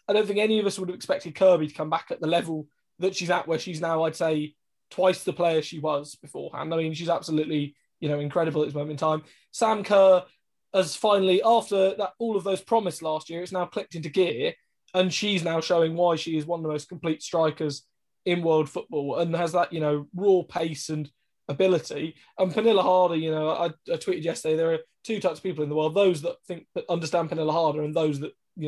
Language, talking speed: English, 235 wpm